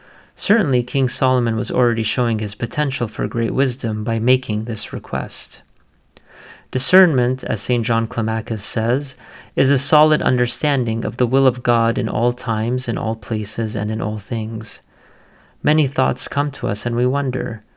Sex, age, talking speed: male, 30-49, 160 wpm